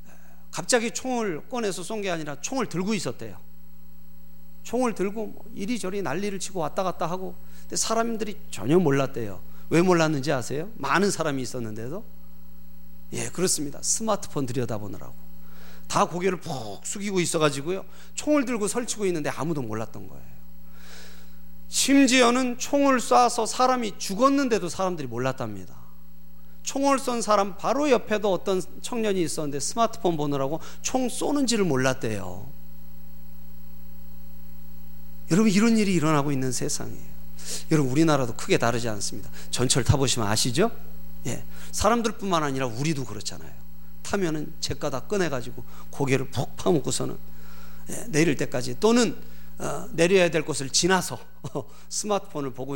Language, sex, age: Korean, male, 40-59